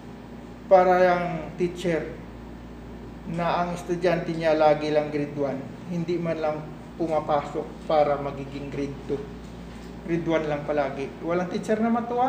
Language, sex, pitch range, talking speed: English, male, 150-210 Hz, 130 wpm